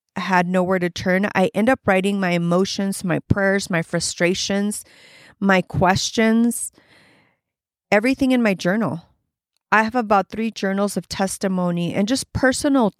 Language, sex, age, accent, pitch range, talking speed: English, female, 30-49, American, 175-205 Hz, 140 wpm